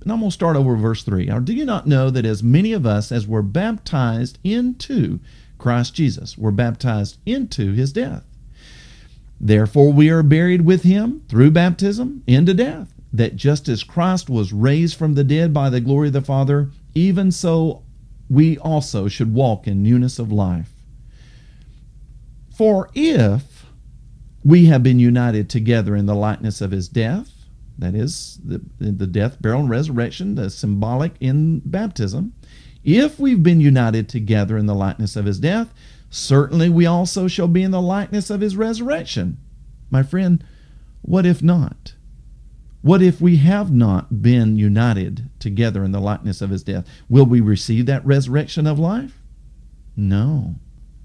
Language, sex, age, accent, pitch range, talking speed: English, male, 50-69, American, 110-175 Hz, 160 wpm